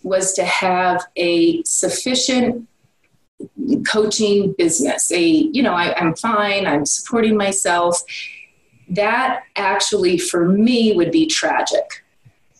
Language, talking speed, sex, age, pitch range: English, 105 wpm, female, 30-49, 175-225 Hz